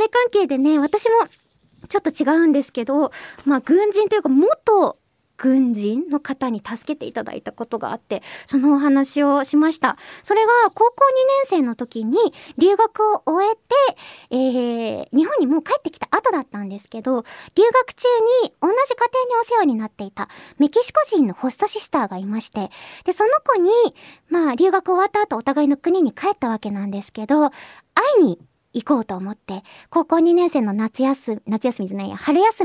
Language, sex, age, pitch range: Japanese, male, 20-39, 230-370 Hz